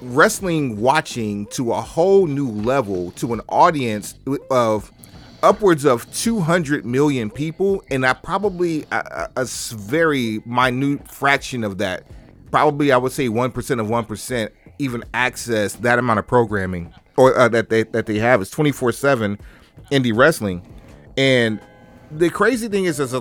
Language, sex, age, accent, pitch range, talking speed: English, male, 30-49, American, 105-135 Hz, 155 wpm